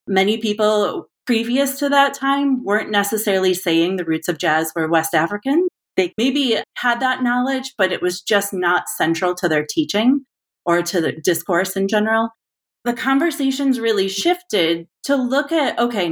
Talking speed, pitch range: 165 wpm, 170-235 Hz